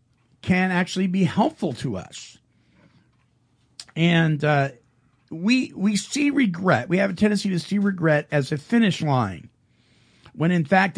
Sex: male